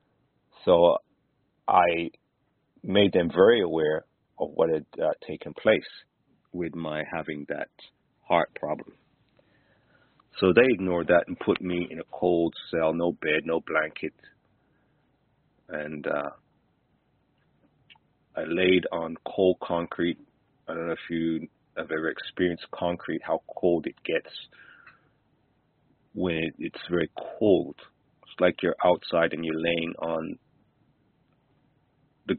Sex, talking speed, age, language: male, 120 wpm, 40-59, English